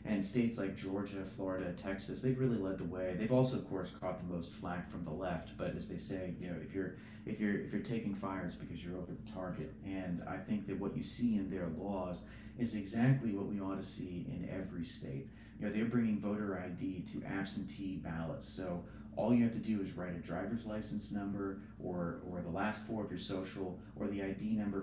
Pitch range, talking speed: 95-110 Hz, 225 wpm